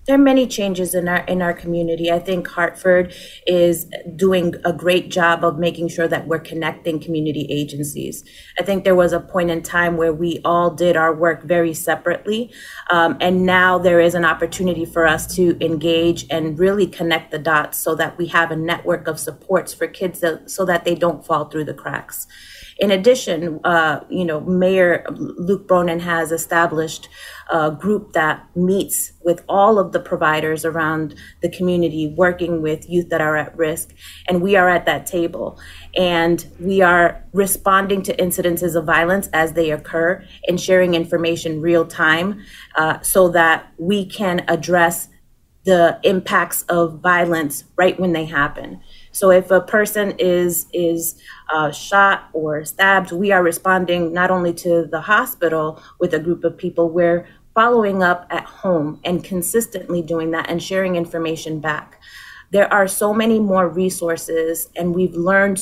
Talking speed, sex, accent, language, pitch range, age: 170 wpm, female, American, English, 165-180 Hz, 30-49